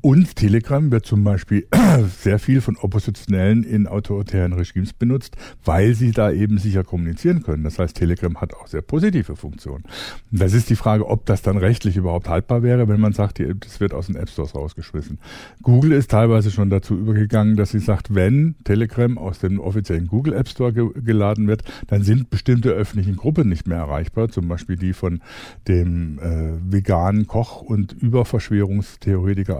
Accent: German